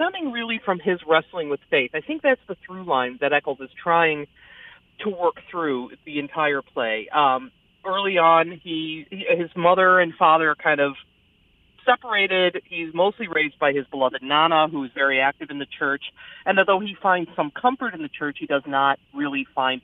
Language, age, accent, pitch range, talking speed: English, 40-59, American, 140-205 Hz, 195 wpm